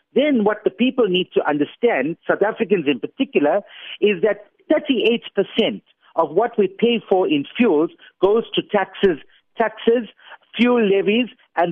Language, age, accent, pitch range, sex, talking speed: English, 50-69, Indian, 175-235 Hz, male, 145 wpm